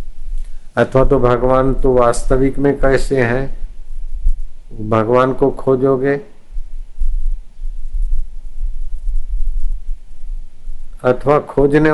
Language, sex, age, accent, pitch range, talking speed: Hindi, male, 60-79, native, 105-120 Hz, 65 wpm